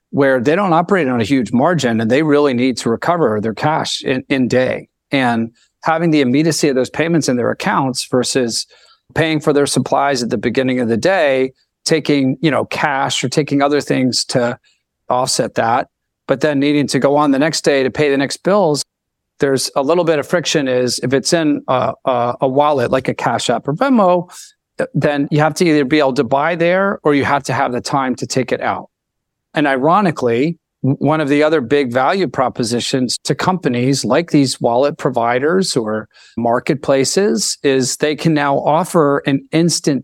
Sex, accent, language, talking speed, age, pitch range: male, American, English, 195 wpm, 40-59, 130-155 Hz